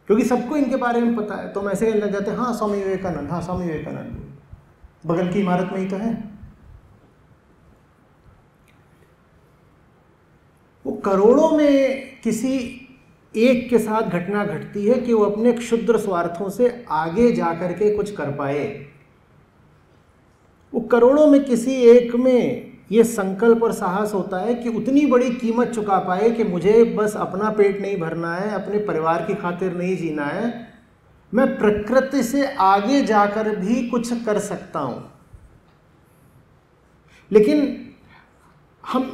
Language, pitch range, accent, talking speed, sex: English, 195-240 Hz, Indian, 145 wpm, male